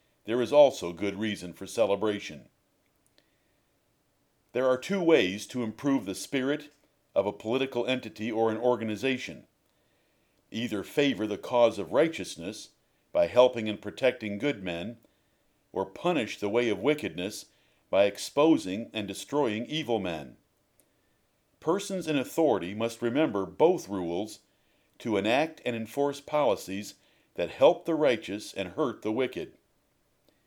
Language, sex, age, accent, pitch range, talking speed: English, male, 50-69, American, 110-145 Hz, 130 wpm